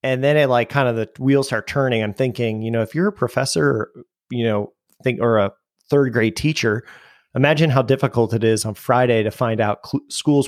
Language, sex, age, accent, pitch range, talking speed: English, male, 30-49, American, 110-130 Hz, 220 wpm